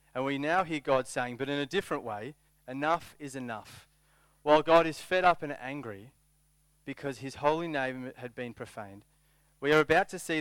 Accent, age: Australian, 30-49